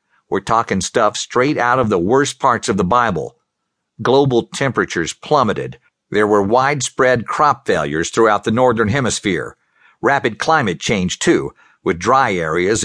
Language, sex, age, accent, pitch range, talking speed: English, male, 50-69, American, 110-180 Hz, 145 wpm